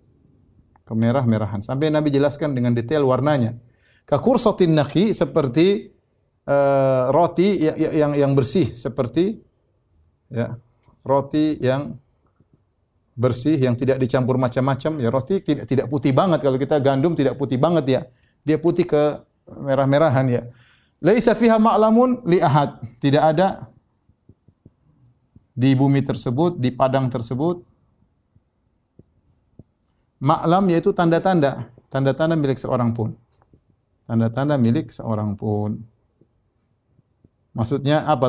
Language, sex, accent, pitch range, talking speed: Indonesian, male, native, 120-165 Hz, 105 wpm